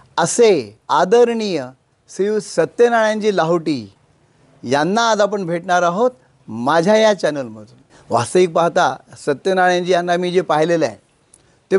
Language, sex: Marathi, male